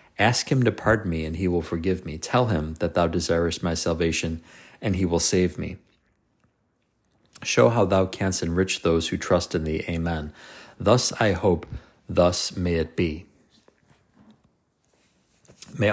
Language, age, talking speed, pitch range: English, 40-59, 155 wpm, 85-100 Hz